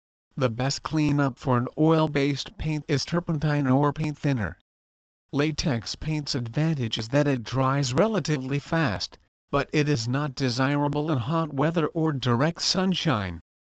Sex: male